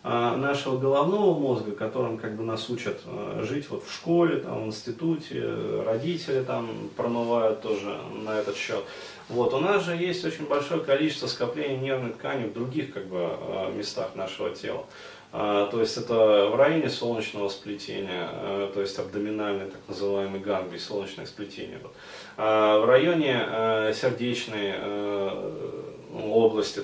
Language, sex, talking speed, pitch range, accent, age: Russian, male, 145 wpm, 105-140 Hz, native, 30-49